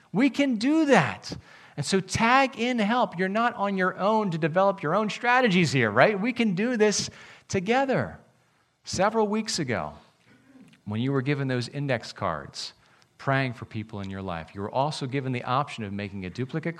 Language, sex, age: English, male, 40-59